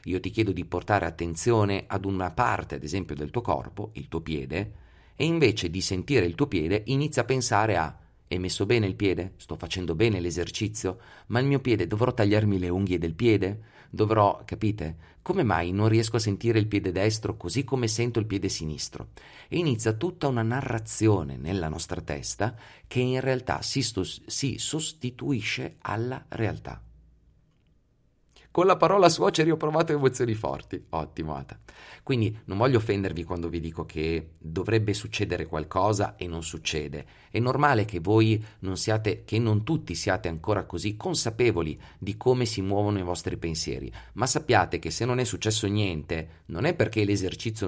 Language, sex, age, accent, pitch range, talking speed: Italian, male, 40-59, native, 85-115 Hz, 170 wpm